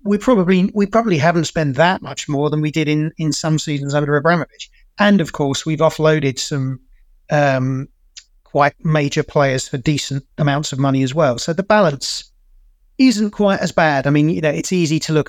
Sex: male